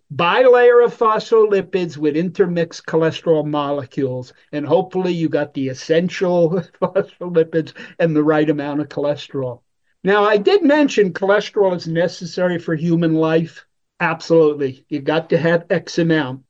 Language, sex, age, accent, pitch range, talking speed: English, male, 50-69, American, 155-190 Hz, 135 wpm